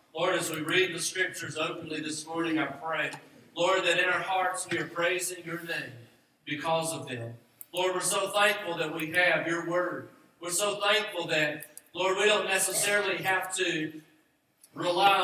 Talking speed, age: 175 wpm, 40-59